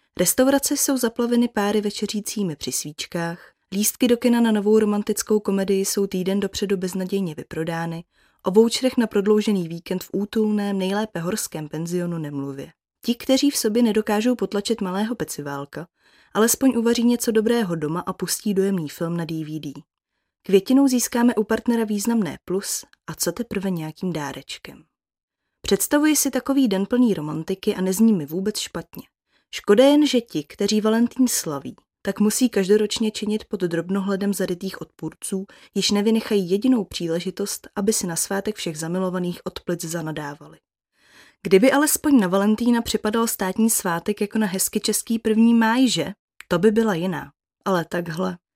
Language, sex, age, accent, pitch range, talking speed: Czech, female, 20-39, native, 180-230 Hz, 145 wpm